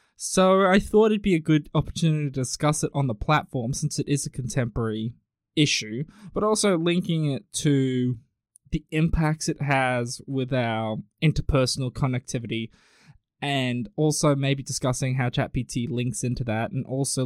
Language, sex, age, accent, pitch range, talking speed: English, male, 20-39, Australian, 120-155 Hz, 155 wpm